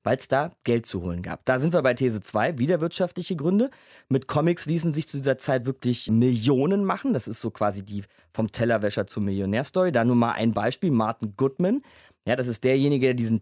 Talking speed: 215 wpm